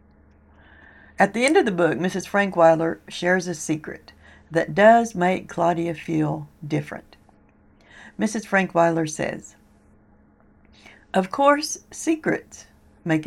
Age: 60-79